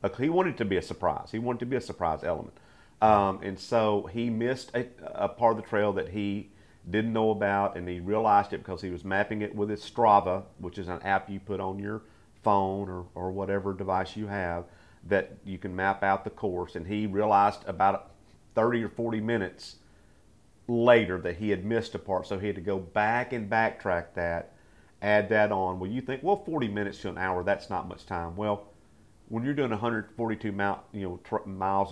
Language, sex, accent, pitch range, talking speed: English, male, American, 90-105 Hz, 215 wpm